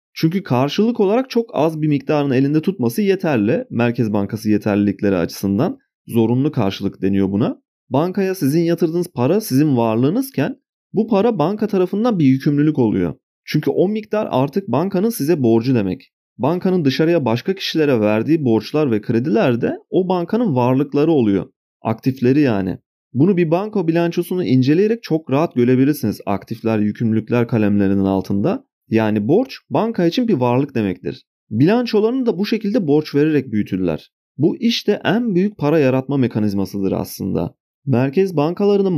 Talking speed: 140 wpm